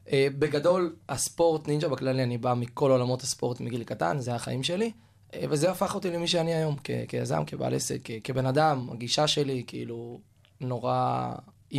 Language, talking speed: Hebrew, 175 wpm